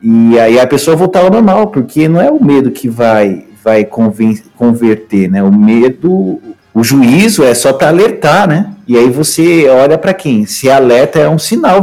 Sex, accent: male, Brazilian